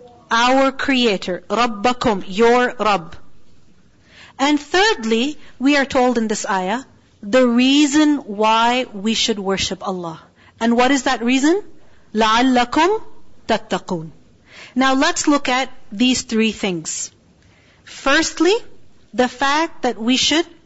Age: 40-59